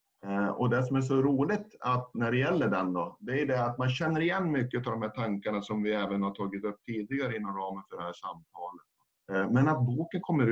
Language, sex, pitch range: Swedish, male, 100-130 Hz